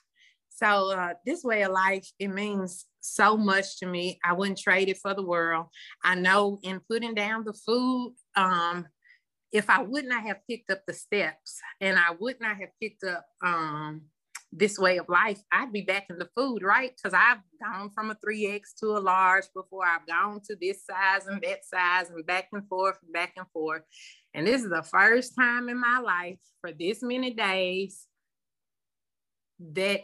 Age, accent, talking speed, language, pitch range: 30-49, American, 190 wpm, English, 170-215 Hz